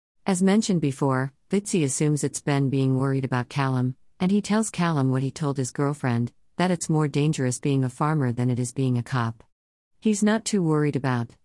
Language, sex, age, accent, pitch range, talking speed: English, female, 50-69, American, 130-155 Hz, 200 wpm